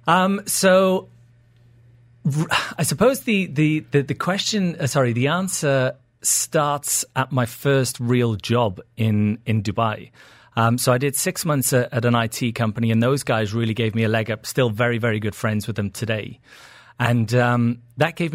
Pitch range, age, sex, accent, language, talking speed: 115-140 Hz, 30-49, male, British, English, 180 wpm